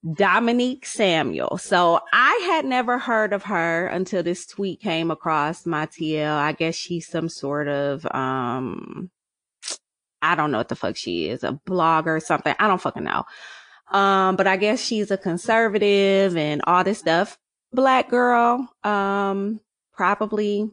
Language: English